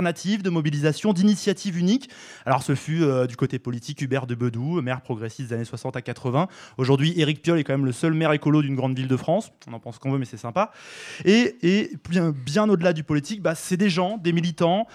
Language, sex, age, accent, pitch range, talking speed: French, male, 20-39, French, 140-175 Hz, 230 wpm